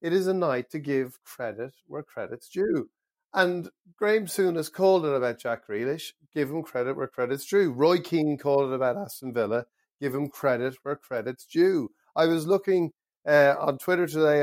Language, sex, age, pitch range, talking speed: English, male, 30-49, 120-150 Hz, 185 wpm